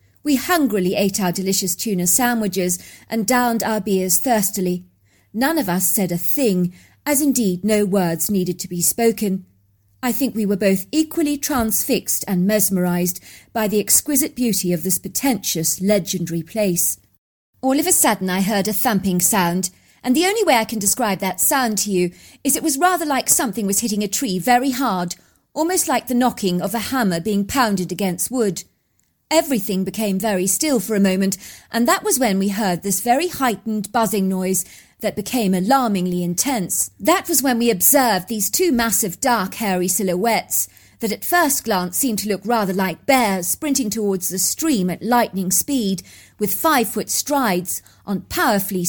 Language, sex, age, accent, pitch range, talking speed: English, female, 40-59, British, 185-250 Hz, 175 wpm